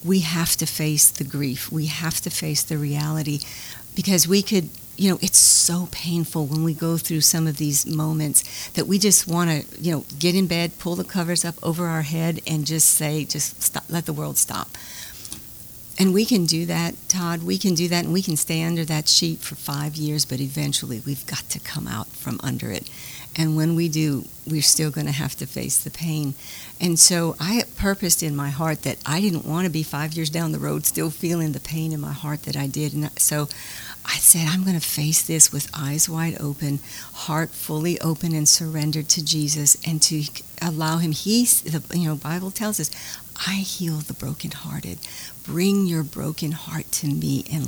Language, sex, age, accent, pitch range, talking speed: English, female, 50-69, American, 145-170 Hz, 210 wpm